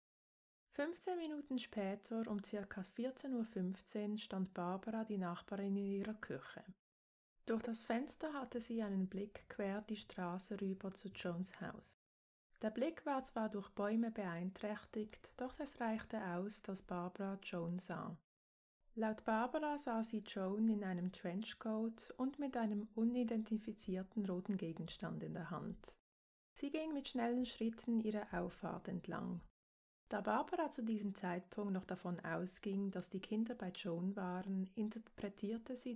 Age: 20-39